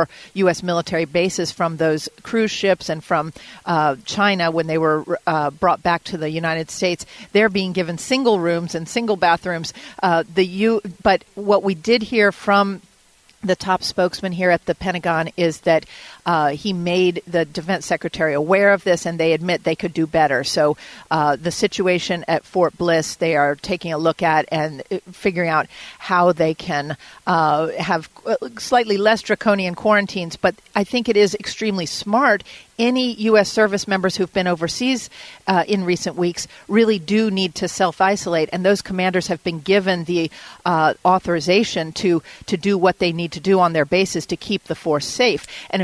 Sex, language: female, English